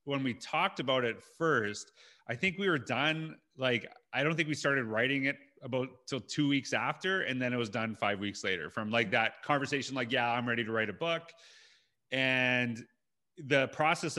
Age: 30-49